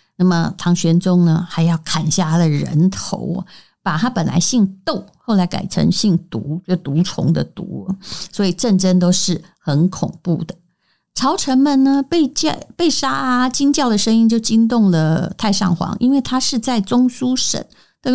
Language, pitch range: Chinese, 180-240 Hz